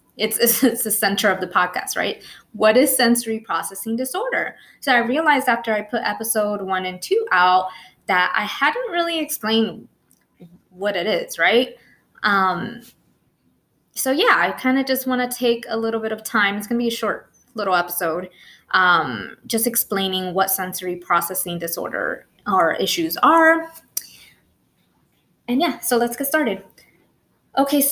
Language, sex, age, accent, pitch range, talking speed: English, female, 20-39, American, 185-245 Hz, 160 wpm